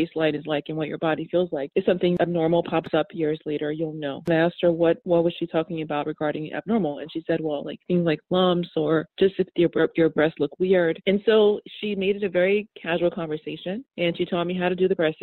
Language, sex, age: English, female, 30-49